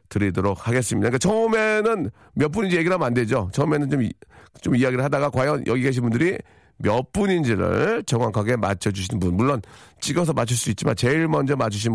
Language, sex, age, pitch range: Korean, male, 40-59, 105-150 Hz